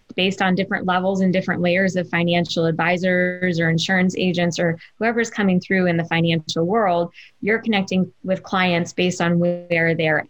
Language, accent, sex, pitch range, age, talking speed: English, American, female, 175-215 Hz, 20-39, 170 wpm